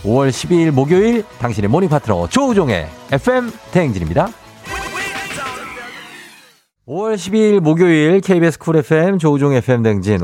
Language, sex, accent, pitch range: Korean, male, native, 100-135 Hz